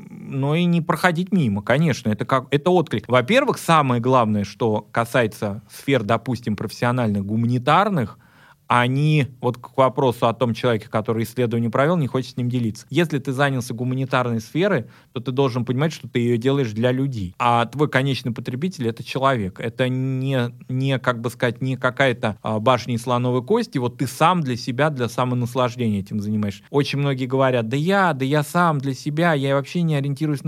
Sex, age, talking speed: male, 20-39, 175 wpm